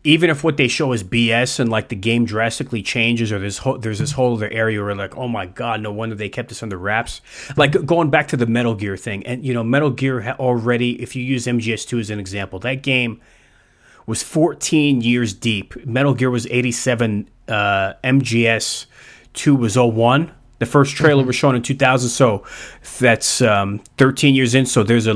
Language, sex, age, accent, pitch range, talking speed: English, male, 30-49, American, 110-125 Hz, 200 wpm